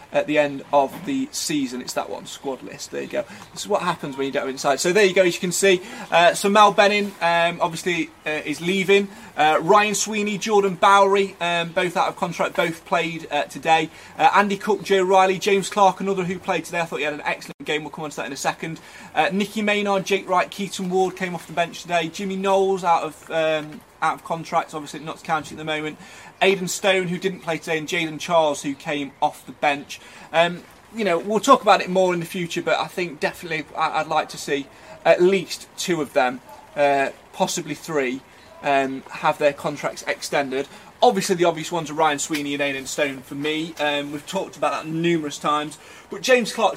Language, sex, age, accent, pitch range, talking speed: English, male, 30-49, British, 155-195 Hz, 225 wpm